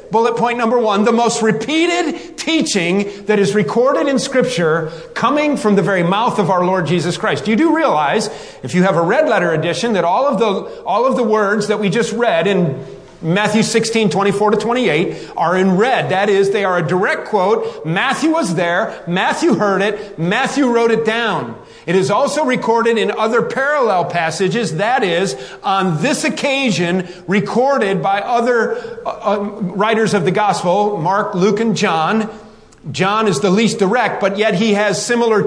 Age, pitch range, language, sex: 40-59, 195-250 Hz, English, male